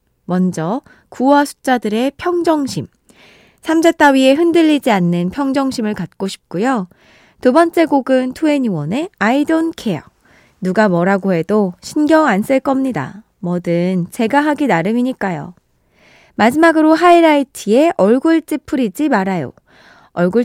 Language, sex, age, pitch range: Korean, female, 20-39, 190-285 Hz